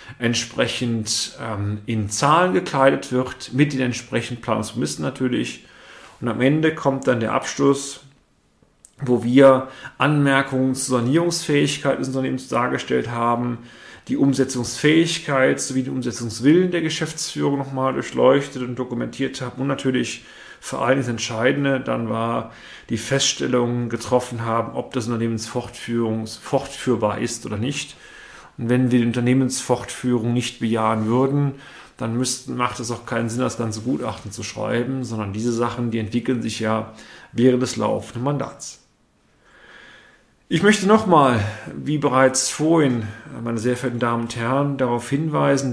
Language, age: German, 40-59